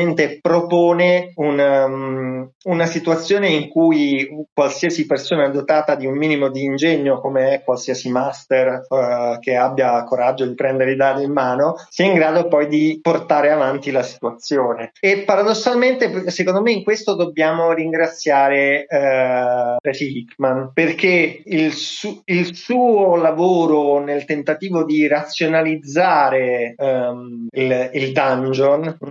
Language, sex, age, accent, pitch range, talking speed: Italian, male, 30-49, native, 135-165 Hz, 115 wpm